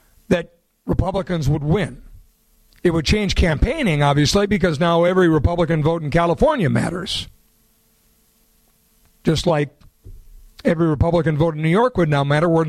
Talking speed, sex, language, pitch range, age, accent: 130 wpm, male, English, 145-185 Hz, 50-69, American